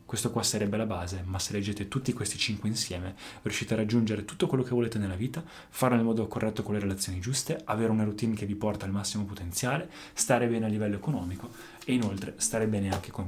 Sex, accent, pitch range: male, native, 105-120 Hz